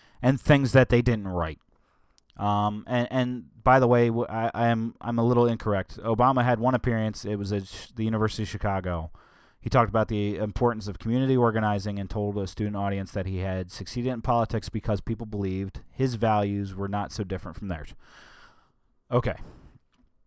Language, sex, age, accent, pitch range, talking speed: English, male, 30-49, American, 95-120 Hz, 180 wpm